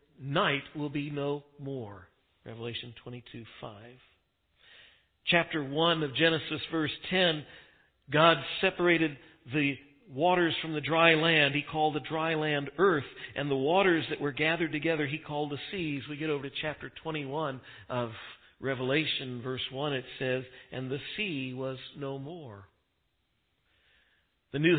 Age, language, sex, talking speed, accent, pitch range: 50-69, English, male, 145 wpm, American, 130-160 Hz